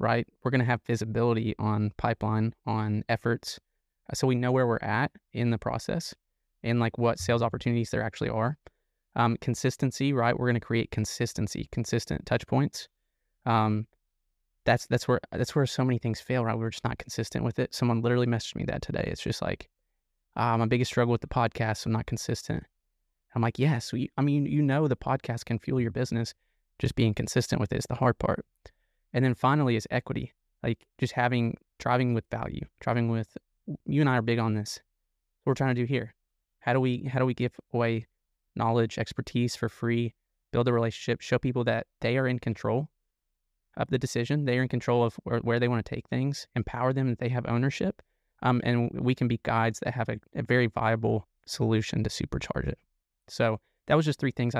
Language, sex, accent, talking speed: English, male, American, 210 wpm